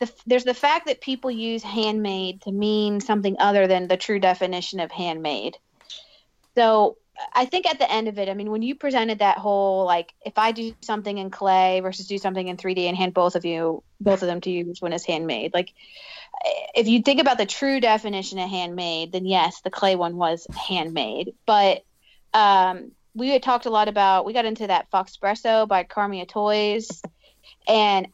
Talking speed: 195 wpm